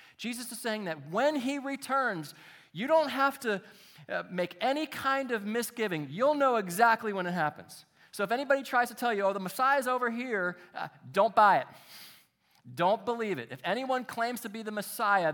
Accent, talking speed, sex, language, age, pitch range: American, 190 wpm, male, English, 40-59, 175-245 Hz